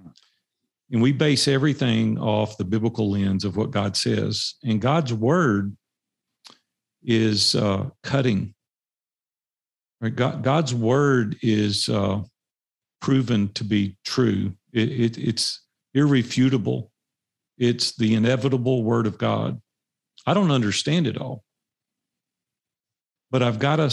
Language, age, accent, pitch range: English, 50-69, American, 105-135 Hz